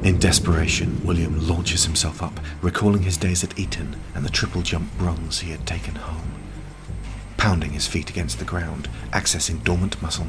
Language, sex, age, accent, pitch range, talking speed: English, male, 40-59, British, 75-90 Hz, 165 wpm